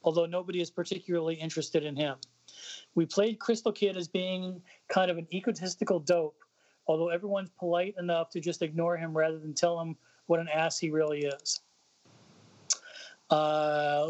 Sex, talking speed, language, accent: male, 160 wpm, English, American